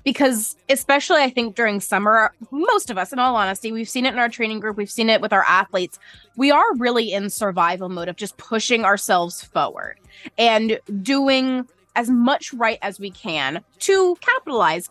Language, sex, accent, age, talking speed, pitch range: English, female, American, 20-39, 185 wpm, 205-265 Hz